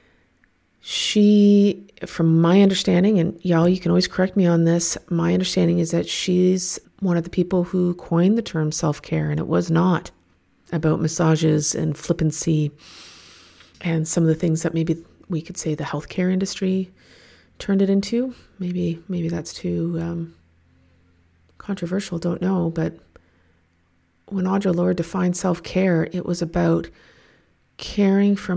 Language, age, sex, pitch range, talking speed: English, 40-59, female, 160-185 Hz, 145 wpm